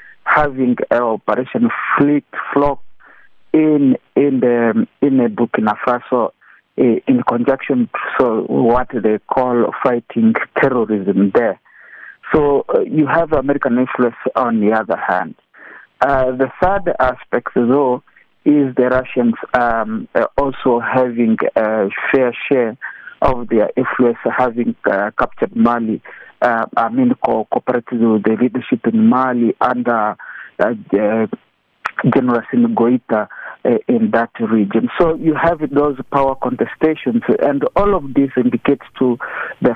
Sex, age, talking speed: male, 50-69, 125 wpm